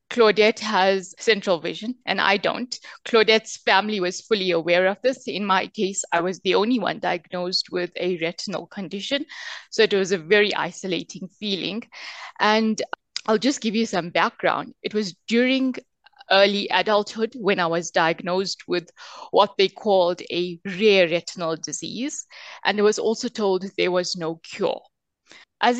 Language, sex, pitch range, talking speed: English, female, 185-230 Hz, 160 wpm